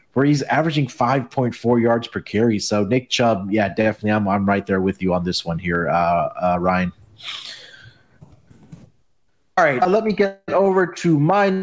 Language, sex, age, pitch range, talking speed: English, male, 30-49, 115-155 Hz, 180 wpm